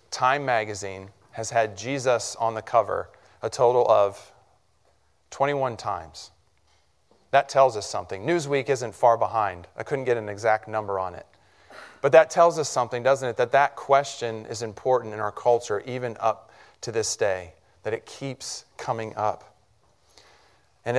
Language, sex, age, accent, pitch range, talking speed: English, male, 40-59, American, 110-140 Hz, 155 wpm